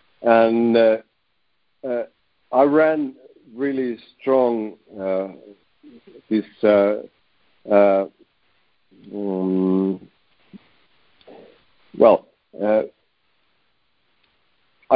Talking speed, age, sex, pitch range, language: 55 wpm, 50-69, male, 110-140 Hz, English